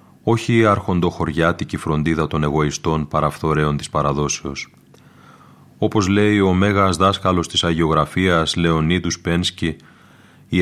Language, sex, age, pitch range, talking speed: Greek, male, 30-49, 80-100 Hz, 105 wpm